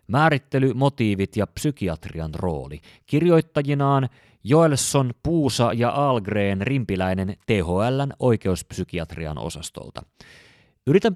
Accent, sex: native, male